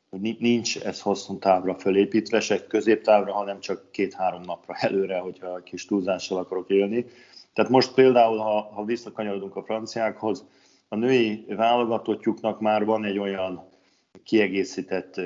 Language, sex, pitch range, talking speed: Hungarian, male, 100-110 Hz, 135 wpm